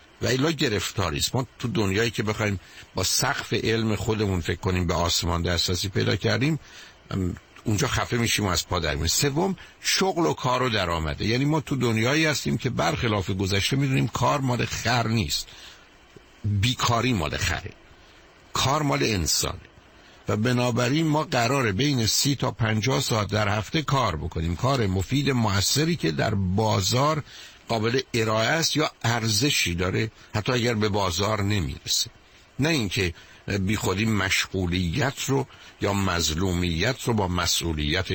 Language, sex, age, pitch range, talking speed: Persian, male, 60-79, 95-130 Hz, 140 wpm